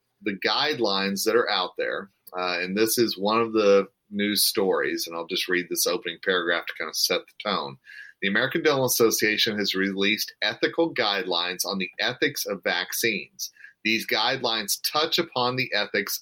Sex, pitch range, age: male, 95-120 Hz, 40-59